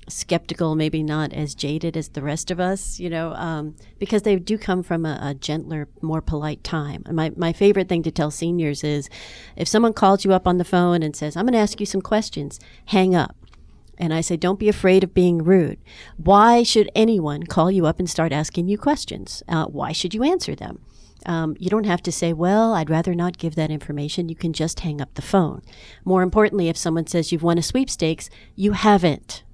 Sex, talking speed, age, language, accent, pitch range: female, 220 wpm, 40-59, English, American, 160-195 Hz